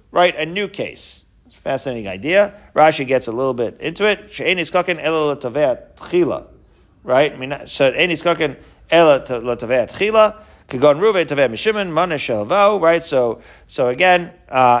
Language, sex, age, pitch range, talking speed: English, male, 40-59, 140-205 Hz, 85 wpm